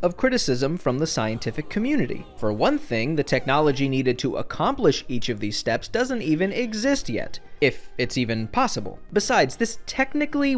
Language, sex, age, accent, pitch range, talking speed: English, male, 20-39, American, 145-230 Hz, 165 wpm